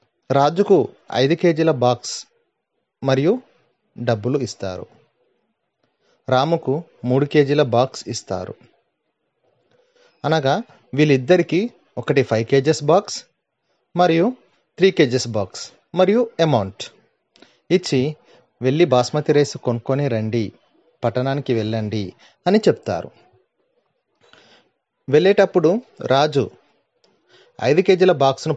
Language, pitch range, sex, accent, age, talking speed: Telugu, 120-165 Hz, male, native, 30-49, 80 wpm